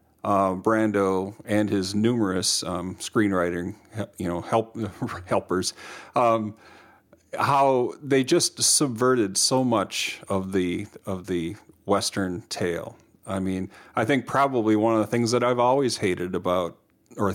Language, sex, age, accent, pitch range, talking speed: English, male, 40-59, American, 95-115 Hz, 135 wpm